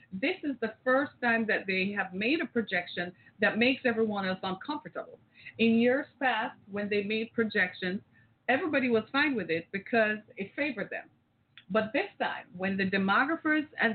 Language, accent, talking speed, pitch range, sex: English, American, 170 wpm, 190-245 Hz, female